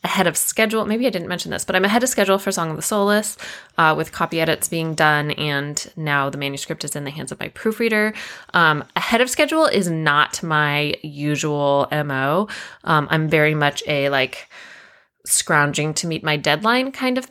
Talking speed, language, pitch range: 200 wpm, English, 150-185 Hz